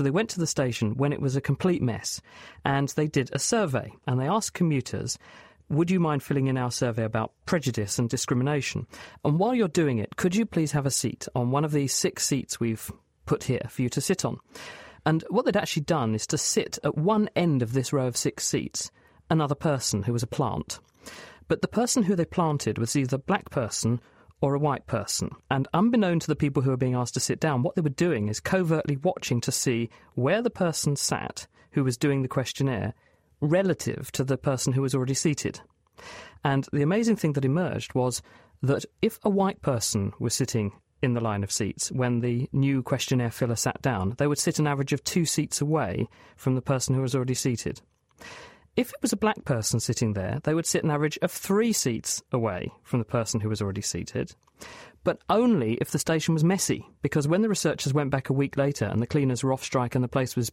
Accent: British